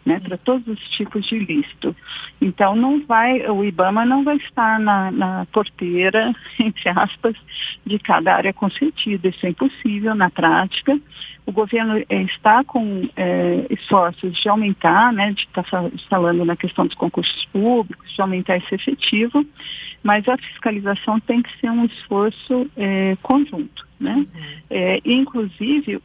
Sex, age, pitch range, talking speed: female, 50-69, 185-245 Hz, 145 wpm